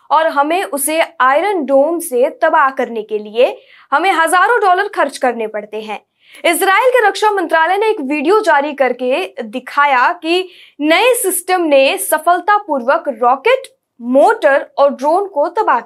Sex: female